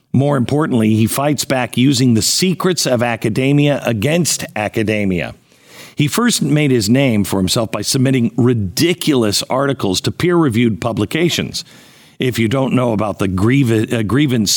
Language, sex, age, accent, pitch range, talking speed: English, male, 50-69, American, 100-135 Hz, 135 wpm